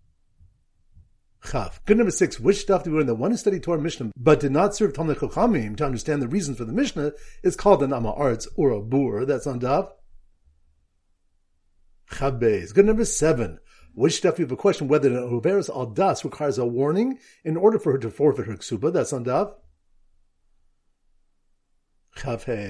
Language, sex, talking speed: English, male, 175 wpm